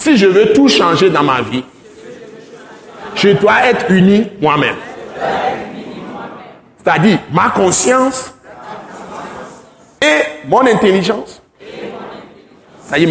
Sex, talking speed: male, 90 wpm